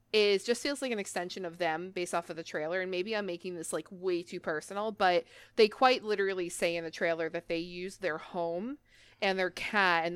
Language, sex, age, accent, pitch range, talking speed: English, female, 20-39, American, 175-205 Hz, 230 wpm